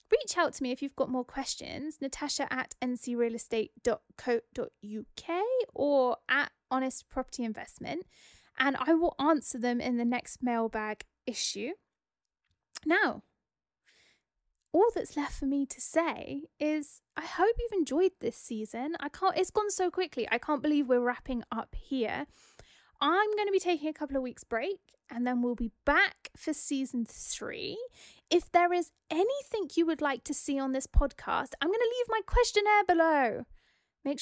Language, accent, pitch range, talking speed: English, British, 245-340 Hz, 160 wpm